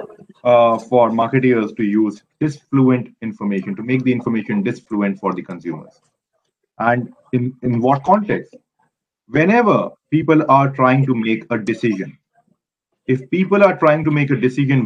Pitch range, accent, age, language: 115-145 Hz, Indian, 30-49, English